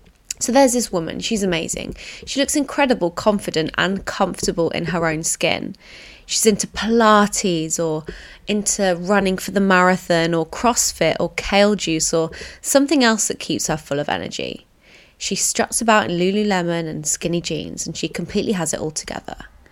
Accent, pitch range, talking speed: British, 170-215 Hz, 165 wpm